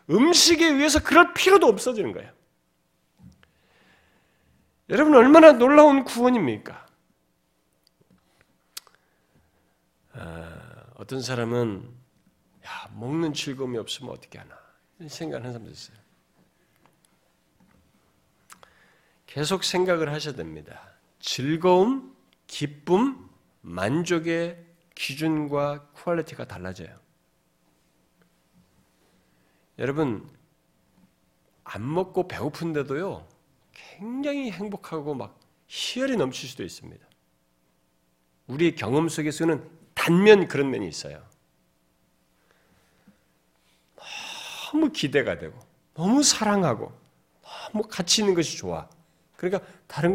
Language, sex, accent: Korean, male, native